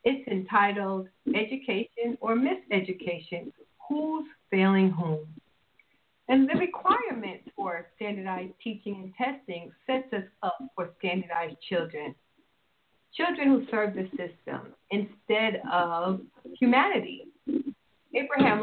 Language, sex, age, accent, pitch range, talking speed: English, female, 50-69, American, 190-265 Hz, 100 wpm